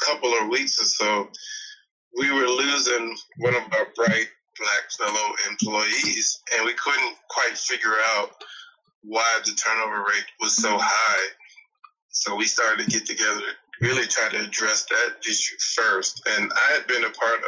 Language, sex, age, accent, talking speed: English, male, 20-39, American, 165 wpm